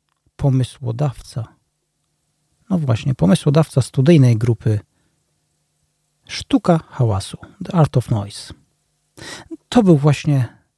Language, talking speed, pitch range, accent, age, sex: Polish, 85 wpm, 120-150 Hz, native, 40-59, male